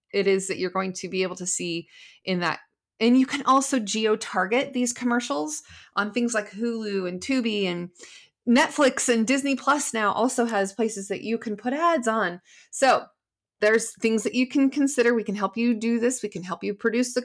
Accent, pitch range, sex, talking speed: American, 195-245 Hz, female, 205 wpm